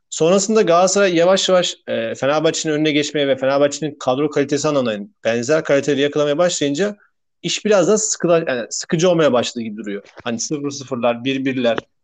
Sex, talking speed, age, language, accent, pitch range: male, 140 wpm, 40-59, Turkish, native, 140-180 Hz